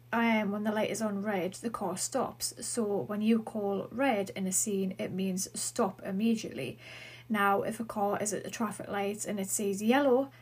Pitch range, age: 195-230 Hz, 30-49